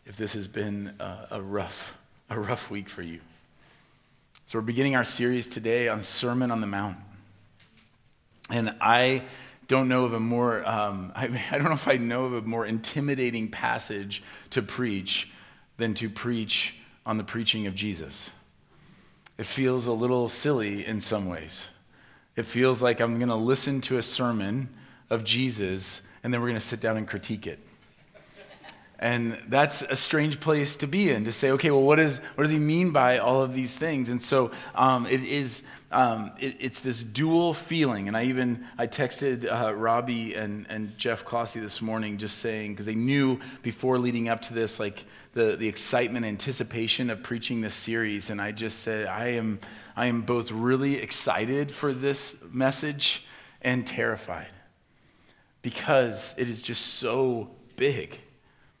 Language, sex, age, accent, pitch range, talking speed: English, male, 40-59, American, 110-130 Hz, 175 wpm